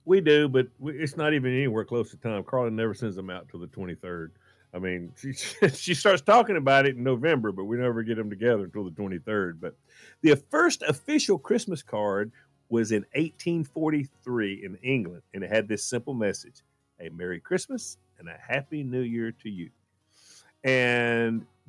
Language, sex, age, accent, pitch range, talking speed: English, male, 50-69, American, 100-140 Hz, 180 wpm